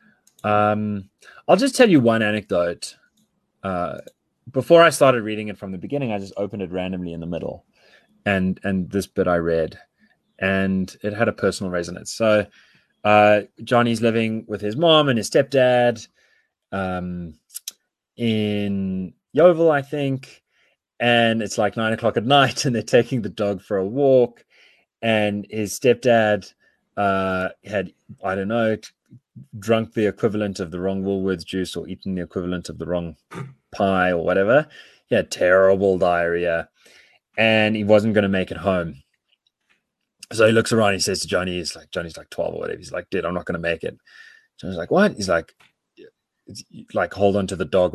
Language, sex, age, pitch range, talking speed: English, male, 20-39, 95-115 Hz, 175 wpm